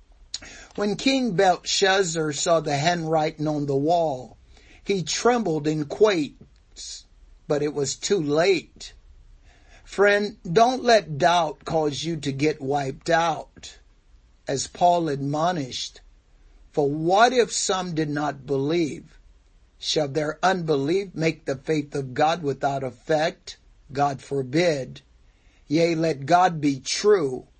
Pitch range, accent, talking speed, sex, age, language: 135-165 Hz, American, 120 wpm, male, 60-79, English